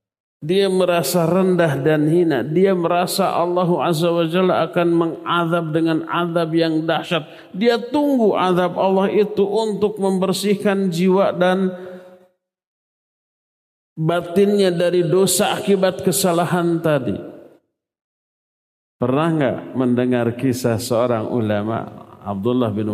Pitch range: 135-185 Hz